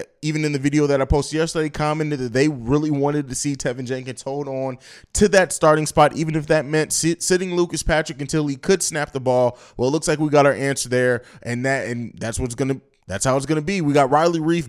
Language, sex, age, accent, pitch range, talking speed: English, male, 20-39, American, 135-175 Hz, 255 wpm